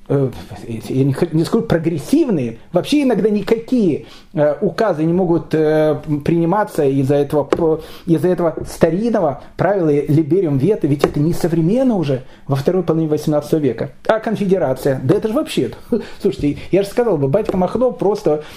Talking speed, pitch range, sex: 150 wpm, 155-225 Hz, male